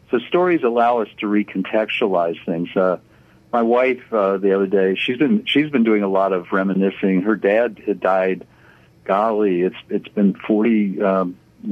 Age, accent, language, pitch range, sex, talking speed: 50-69, American, English, 95-120 Hz, male, 175 wpm